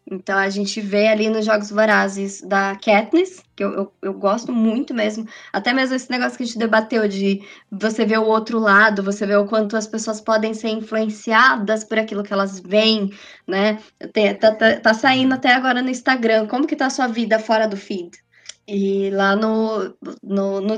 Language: Portuguese